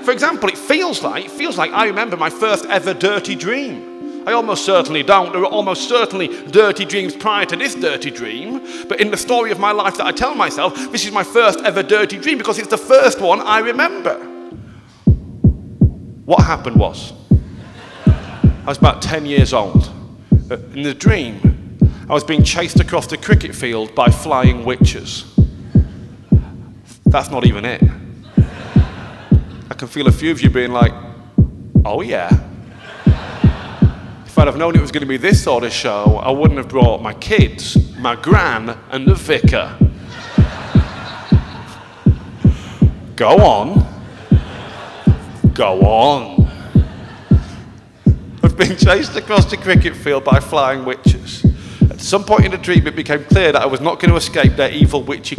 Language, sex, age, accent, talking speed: English, male, 40-59, British, 160 wpm